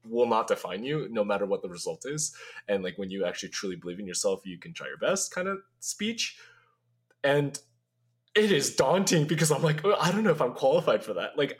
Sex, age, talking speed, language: male, 20-39, 220 wpm, English